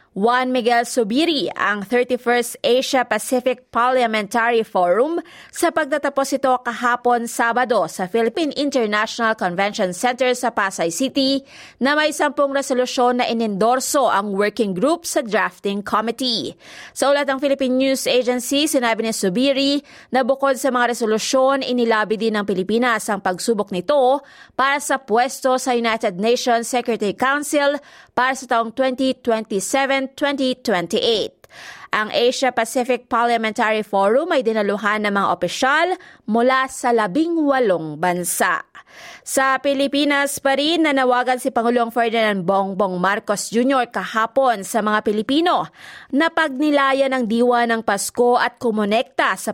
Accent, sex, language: native, female, Filipino